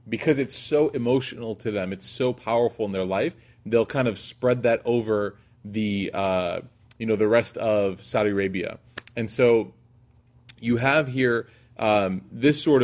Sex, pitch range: male, 110-125 Hz